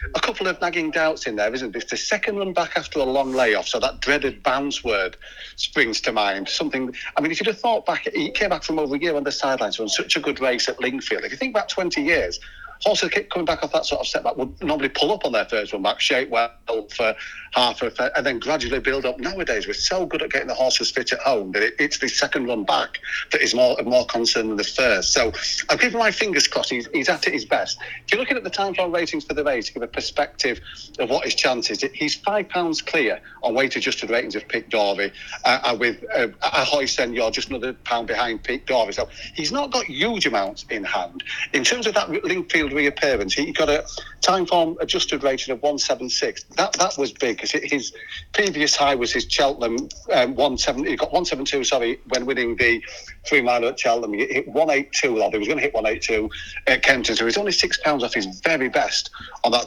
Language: English